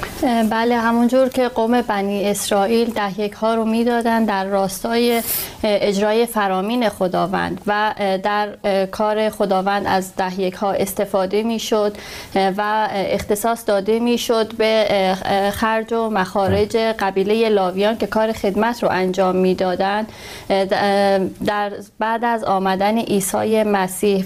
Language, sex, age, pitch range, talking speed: Persian, female, 30-49, 200-225 Hz, 120 wpm